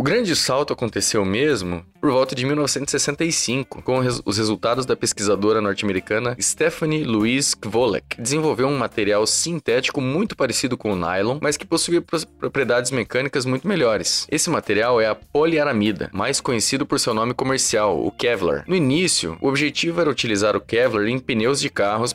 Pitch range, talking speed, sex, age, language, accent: 105-150 Hz, 170 wpm, male, 20-39, Portuguese, Brazilian